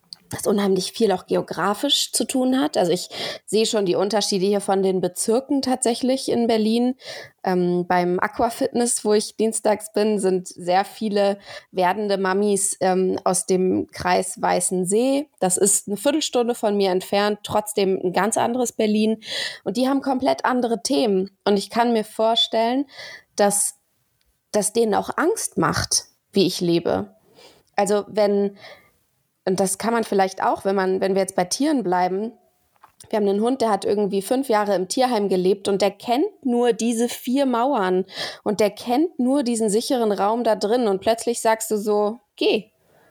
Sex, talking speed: female, 165 wpm